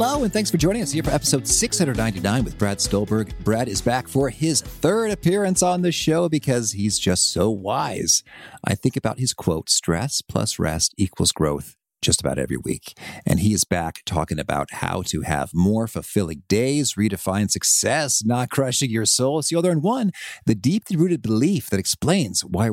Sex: male